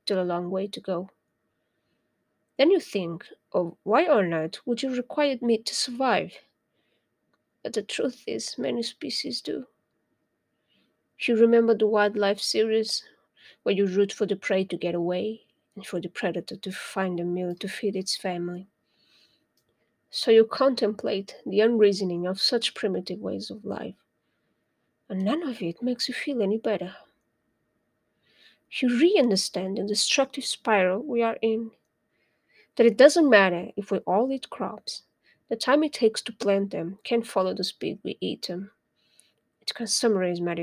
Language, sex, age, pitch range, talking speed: English, female, 20-39, 190-240 Hz, 160 wpm